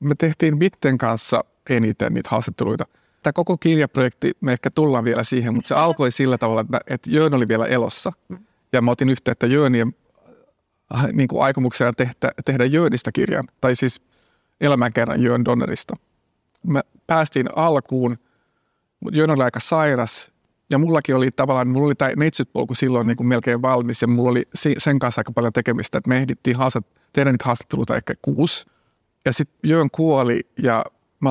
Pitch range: 120-145 Hz